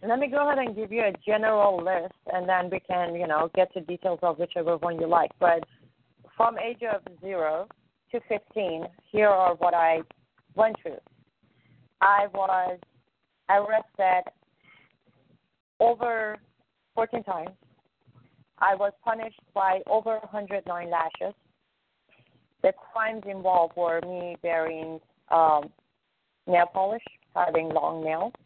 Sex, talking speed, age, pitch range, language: female, 130 wpm, 30-49, 165-200 Hz, English